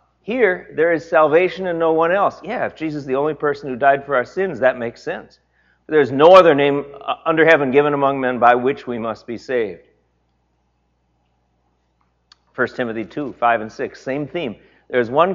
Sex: male